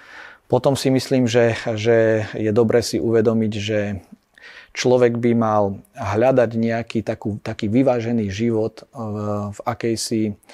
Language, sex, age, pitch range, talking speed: Slovak, male, 40-59, 105-120 Hz, 125 wpm